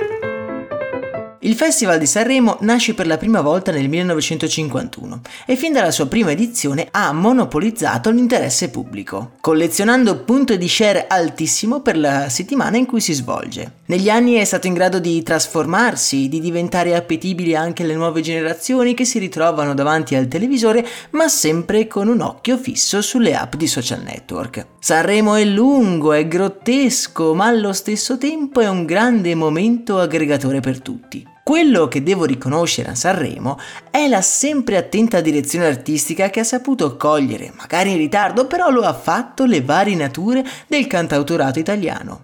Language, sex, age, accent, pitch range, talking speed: Italian, male, 30-49, native, 160-240 Hz, 155 wpm